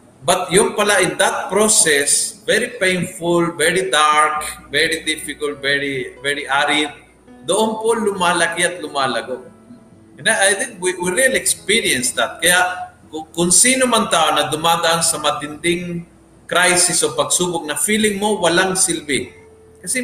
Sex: male